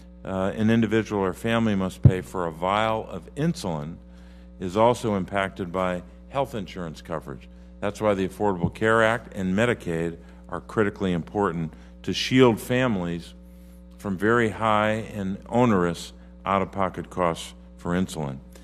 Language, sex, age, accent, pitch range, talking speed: English, male, 50-69, American, 65-110 Hz, 135 wpm